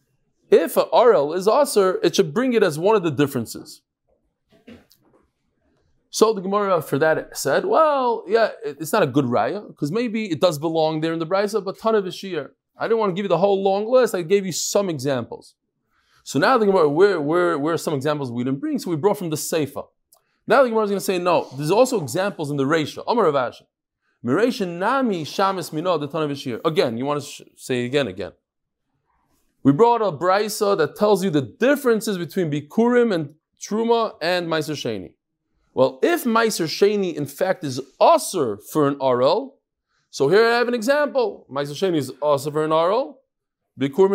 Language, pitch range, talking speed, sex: English, 155-230 Hz, 185 wpm, male